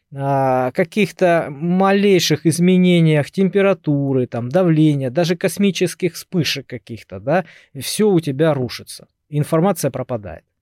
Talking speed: 95 wpm